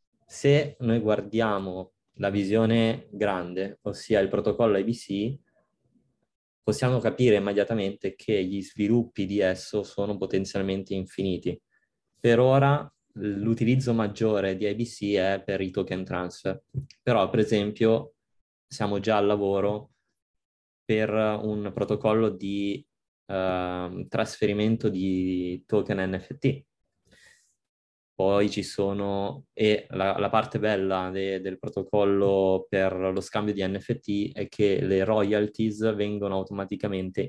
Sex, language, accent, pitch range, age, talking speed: male, Italian, native, 95-110 Hz, 20-39, 110 wpm